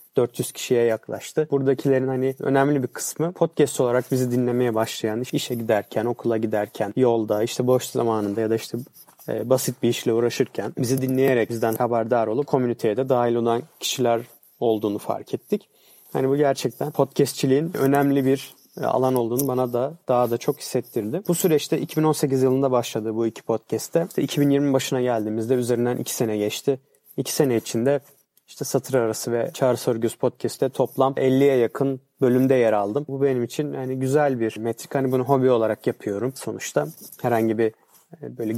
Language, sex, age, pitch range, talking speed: Turkish, male, 30-49, 115-140 Hz, 160 wpm